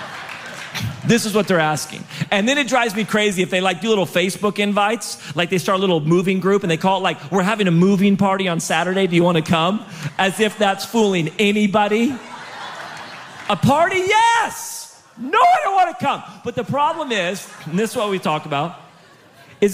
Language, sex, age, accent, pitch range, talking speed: English, male, 40-59, American, 165-230 Hz, 200 wpm